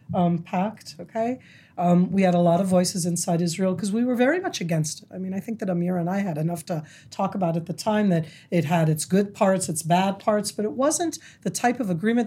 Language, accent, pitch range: English, American, 175-220 Hz